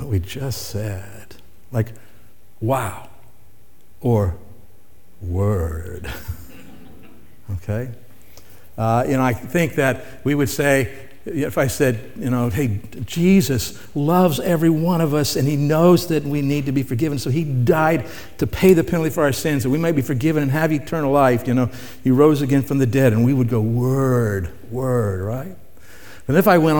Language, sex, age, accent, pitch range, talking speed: English, male, 60-79, American, 105-155 Hz, 170 wpm